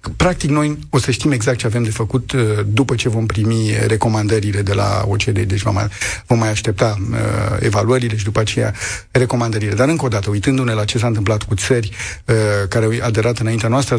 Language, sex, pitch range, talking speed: Romanian, male, 105-120 Hz, 185 wpm